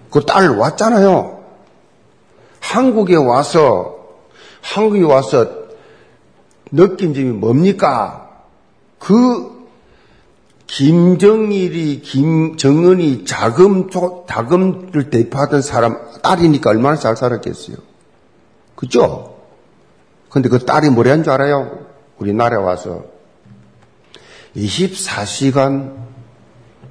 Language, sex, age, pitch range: Korean, male, 50-69, 115-185 Hz